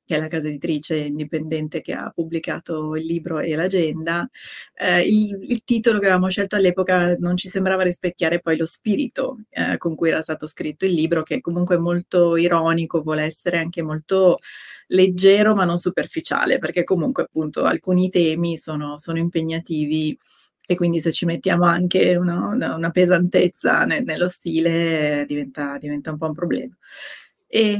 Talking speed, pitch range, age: 160 wpm, 160-190 Hz, 30-49